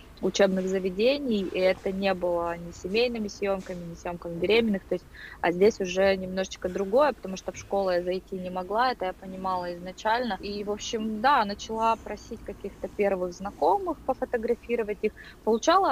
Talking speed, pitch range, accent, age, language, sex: 160 wpm, 185-215 Hz, native, 20-39, Russian, female